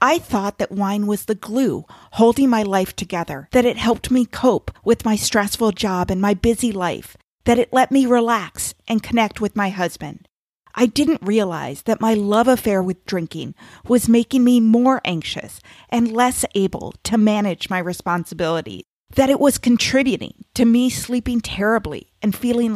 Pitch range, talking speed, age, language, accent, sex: 195-245 Hz, 170 wpm, 40-59, English, American, female